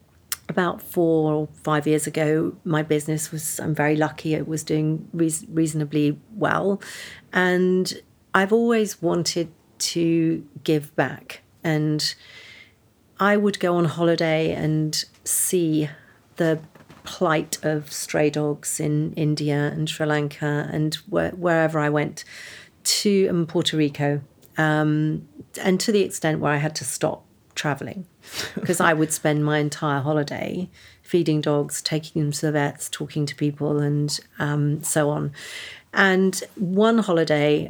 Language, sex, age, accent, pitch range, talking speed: English, female, 40-59, British, 150-175 Hz, 135 wpm